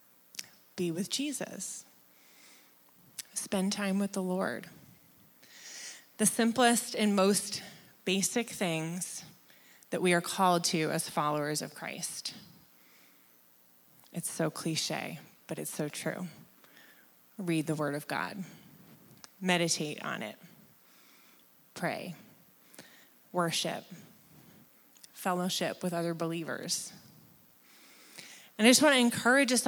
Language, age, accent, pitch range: English, 20-39, American, 165-200 Hz